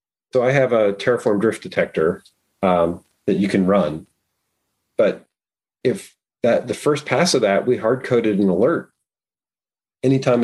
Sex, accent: male, American